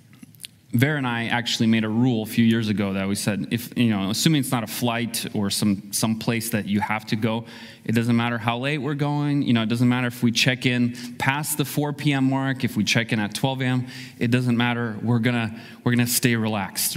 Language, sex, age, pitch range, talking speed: English, male, 30-49, 110-130 Hz, 240 wpm